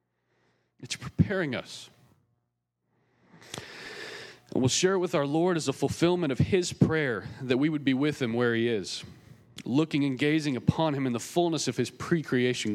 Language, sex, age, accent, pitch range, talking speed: English, male, 40-59, American, 105-145 Hz, 170 wpm